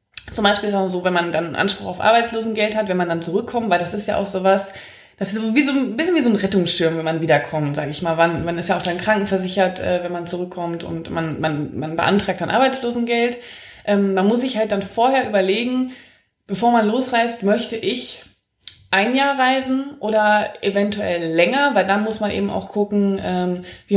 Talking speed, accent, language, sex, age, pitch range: 205 wpm, German, German, female, 20-39, 180-230 Hz